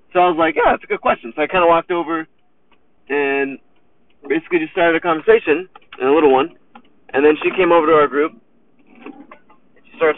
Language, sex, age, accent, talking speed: English, male, 30-49, American, 205 wpm